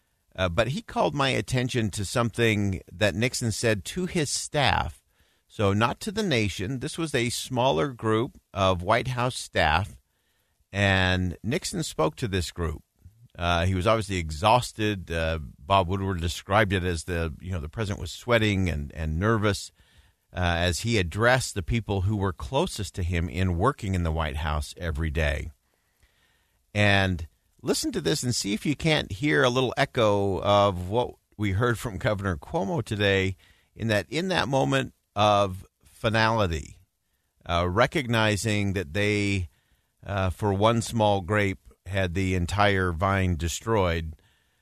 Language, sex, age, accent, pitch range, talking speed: English, male, 50-69, American, 90-115 Hz, 155 wpm